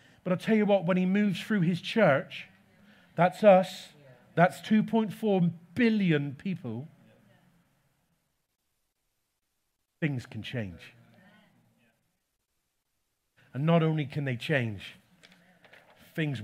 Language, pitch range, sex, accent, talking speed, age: English, 160-205 Hz, male, British, 100 wpm, 40-59